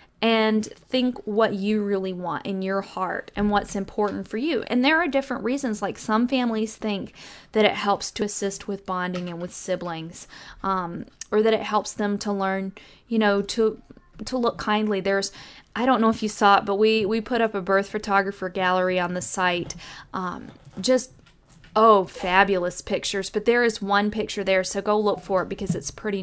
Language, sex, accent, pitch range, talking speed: English, female, American, 185-220 Hz, 195 wpm